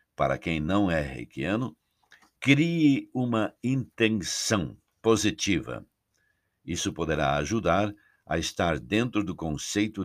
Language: Portuguese